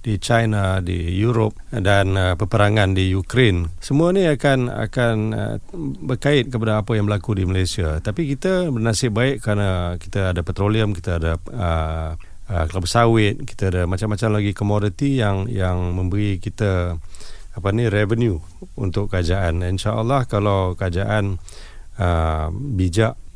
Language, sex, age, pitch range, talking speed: Malay, male, 40-59, 90-110 Hz, 135 wpm